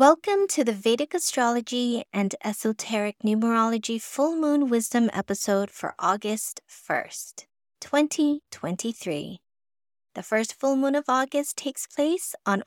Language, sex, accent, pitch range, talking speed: English, female, American, 190-255 Hz, 120 wpm